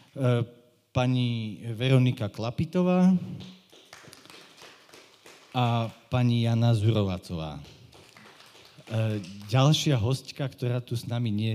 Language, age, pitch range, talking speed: Slovak, 50-69, 100-130 Hz, 75 wpm